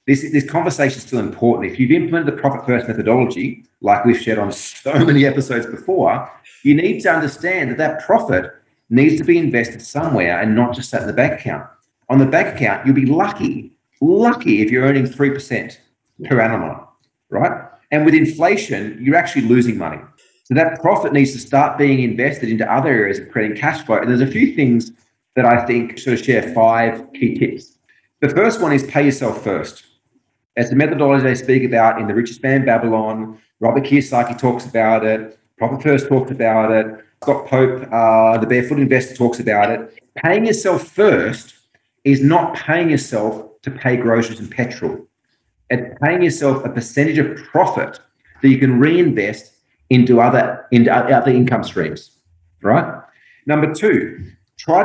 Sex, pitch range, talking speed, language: male, 115-145 Hz, 175 wpm, English